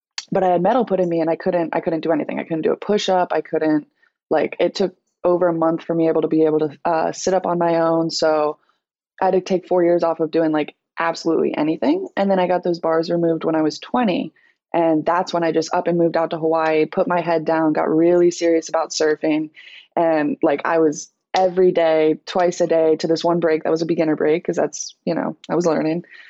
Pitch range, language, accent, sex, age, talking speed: 160-180 Hz, English, American, female, 20-39, 250 wpm